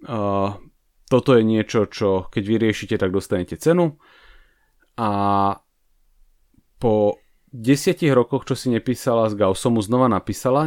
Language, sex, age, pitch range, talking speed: English, male, 30-49, 105-140 Hz, 120 wpm